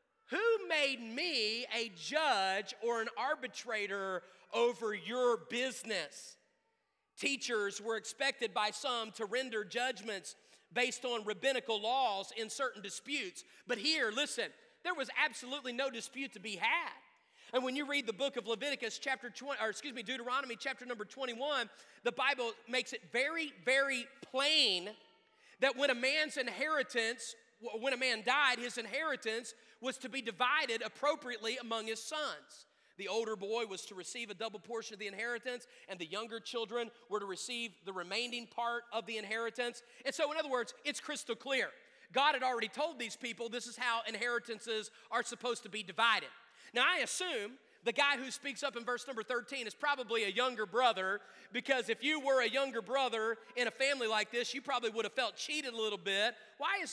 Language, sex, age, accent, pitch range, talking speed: English, male, 40-59, American, 225-275 Hz, 175 wpm